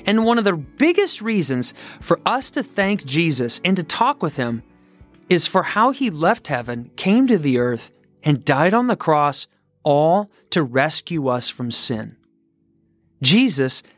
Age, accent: 30-49, American